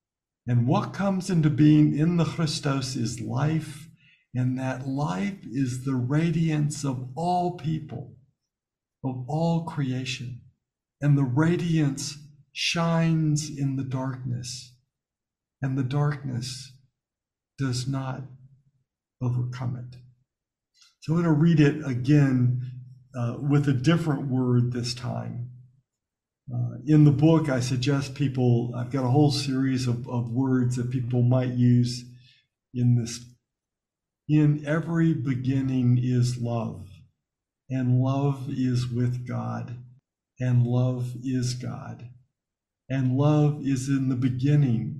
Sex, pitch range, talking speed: male, 125-145 Hz, 120 wpm